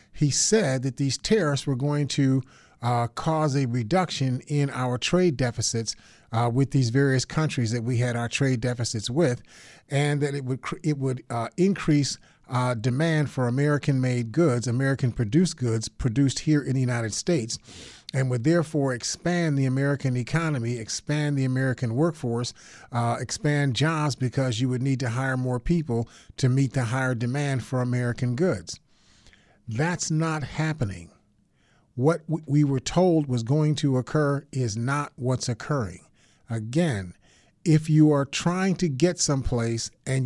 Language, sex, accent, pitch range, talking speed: English, male, American, 125-155 Hz, 155 wpm